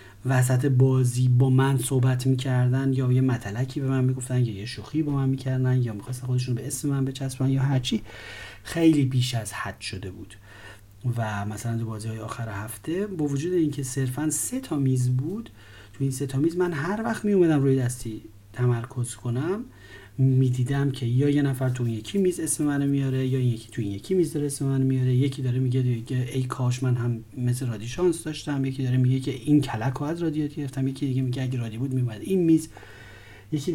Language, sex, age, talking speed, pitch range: Persian, male, 40-59, 205 wpm, 115-145 Hz